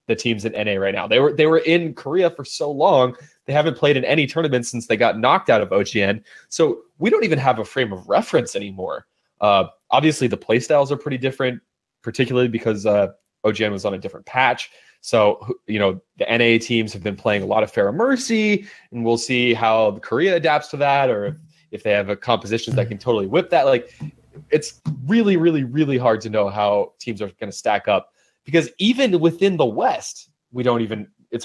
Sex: male